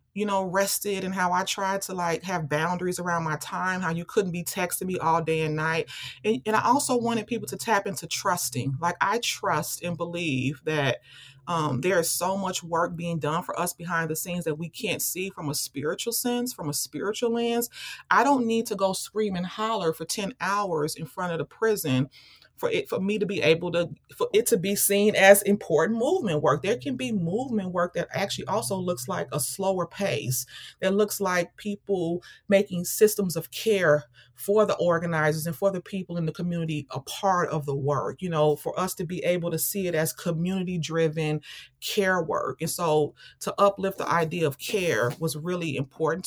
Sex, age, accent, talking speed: female, 30-49, American, 210 wpm